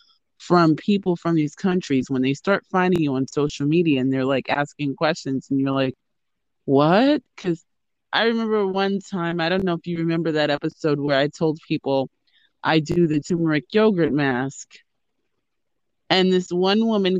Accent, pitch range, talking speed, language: American, 160-205 Hz, 170 wpm, English